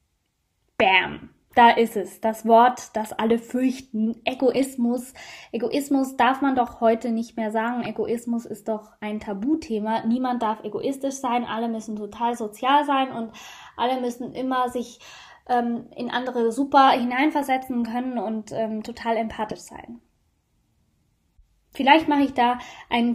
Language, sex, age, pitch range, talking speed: German, female, 10-29, 230-260 Hz, 135 wpm